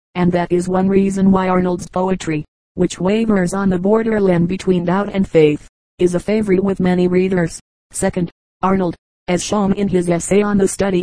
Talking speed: 180 wpm